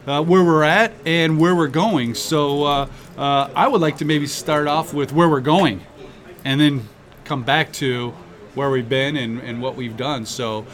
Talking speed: 200 wpm